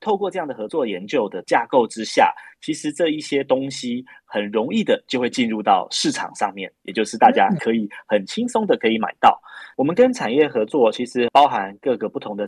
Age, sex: 20-39, male